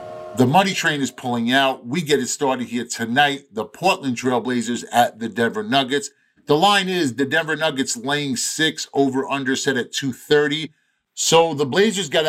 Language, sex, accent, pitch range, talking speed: English, male, American, 120-160 Hz, 180 wpm